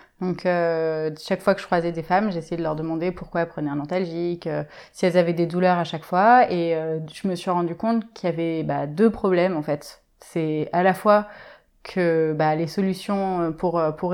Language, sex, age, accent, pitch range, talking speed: French, female, 20-39, French, 165-195 Hz, 220 wpm